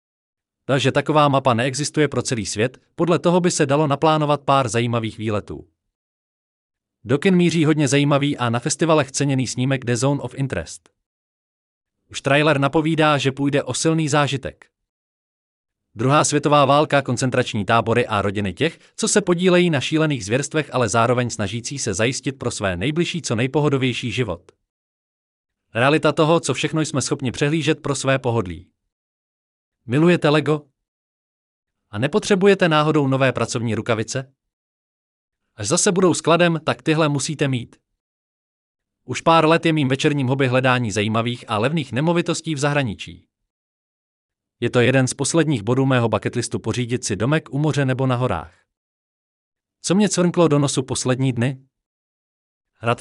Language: Czech